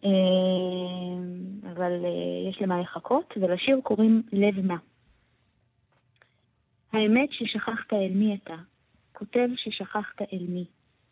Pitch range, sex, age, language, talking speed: 180-210 Hz, female, 20-39, Hebrew, 90 wpm